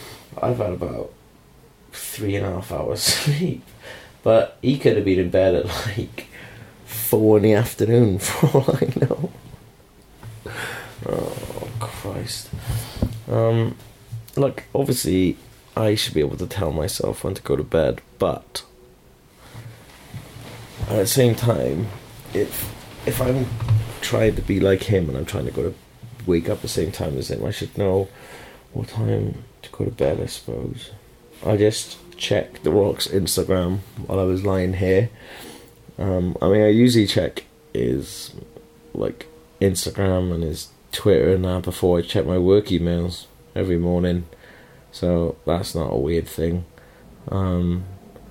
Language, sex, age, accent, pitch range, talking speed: English, male, 30-49, British, 90-115 Hz, 150 wpm